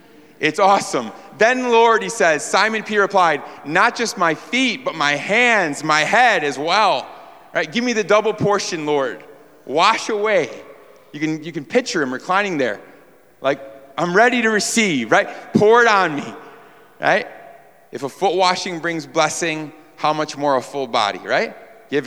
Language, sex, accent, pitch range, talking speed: English, male, American, 130-165 Hz, 170 wpm